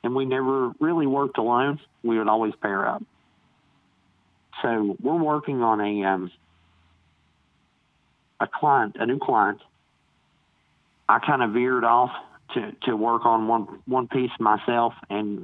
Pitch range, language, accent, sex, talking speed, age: 95-125 Hz, English, American, male, 140 wpm, 40-59